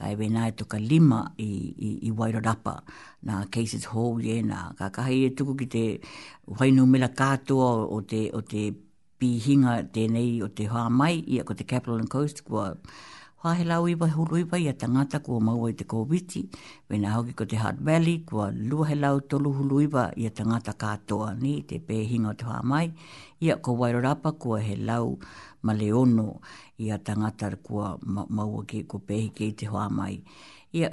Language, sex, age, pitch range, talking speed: English, female, 60-79, 110-135 Hz, 170 wpm